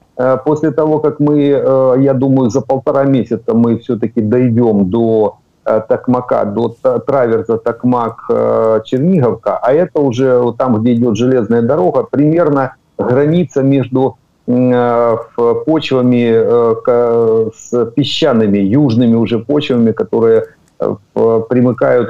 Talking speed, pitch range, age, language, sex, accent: 100 wpm, 115-140 Hz, 50-69, Ukrainian, male, native